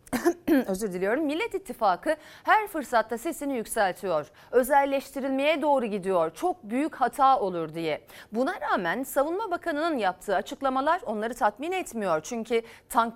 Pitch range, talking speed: 210-305 Hz, 125 wpm